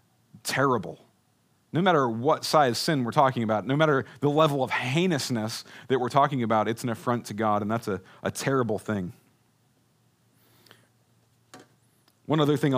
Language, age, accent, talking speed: English, 40-59, American, 155 wpm